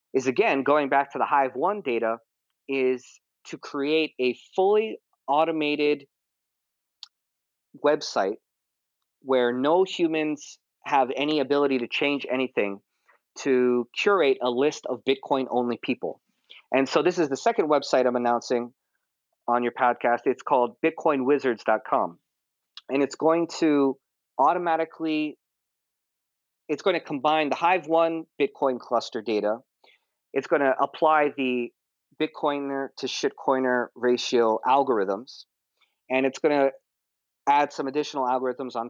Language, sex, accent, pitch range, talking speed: English, male, American, 125-150 Hz, 120 wpm